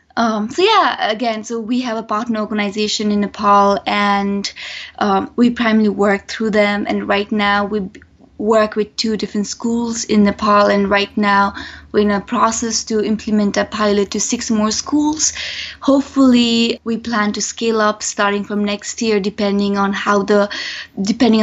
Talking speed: 170 wpm